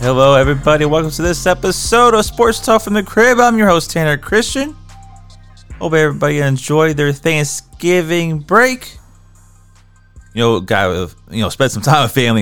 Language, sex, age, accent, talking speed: English, male, 30-49, American, 160 wpm